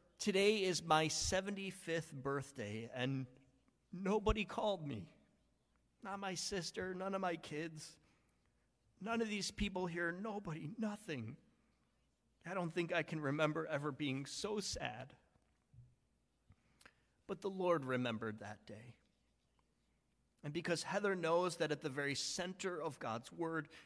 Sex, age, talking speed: male, 40-59, 130 wpm